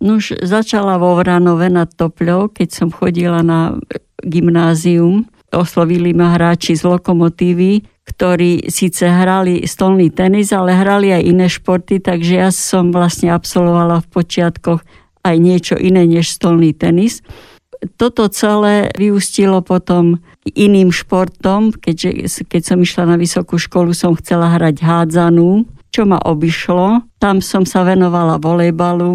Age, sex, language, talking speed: 50-69, female, Slovak, 130 wpm